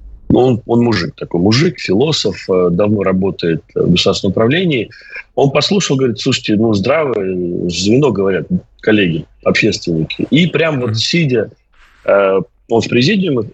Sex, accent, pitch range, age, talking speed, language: male, native, 100-130 Hz, 30-49, 125 wpm, Russian